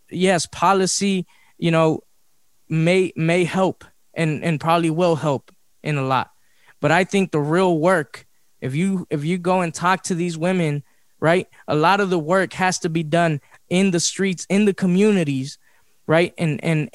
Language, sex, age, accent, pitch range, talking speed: English, male, 20-39, American, 155-190 Hz, 175 wpm